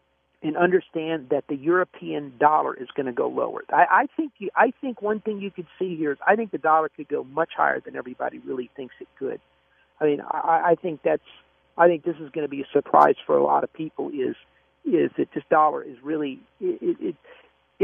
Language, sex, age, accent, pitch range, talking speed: English, male, 50-69, American, 140-185 Hz, 225 wpm